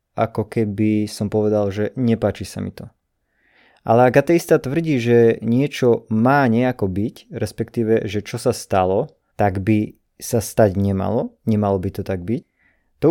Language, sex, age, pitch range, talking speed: Slovak, male, 20-39, 105-130 Hz, 150 wpm